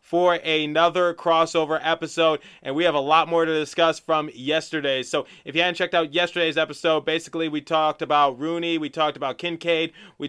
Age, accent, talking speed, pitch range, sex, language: 20-39, American, 185 wpm, 140-165 Hz, male, English